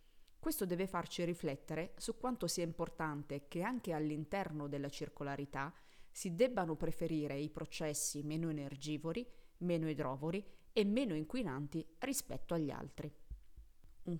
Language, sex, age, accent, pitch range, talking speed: Italian, female, 20-39, native, 145-185 Hz, 125 wpm